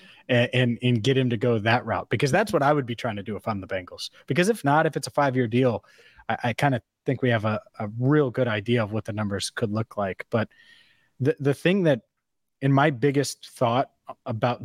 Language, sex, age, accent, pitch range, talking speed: English, male, 30-49, American, 110-140 Hz, 240 wpm